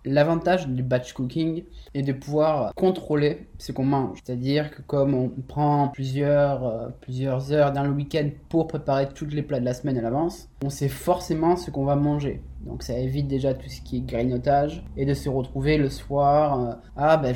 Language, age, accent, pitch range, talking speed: French, 20-39, French, 125-145 Hz, 195 wpm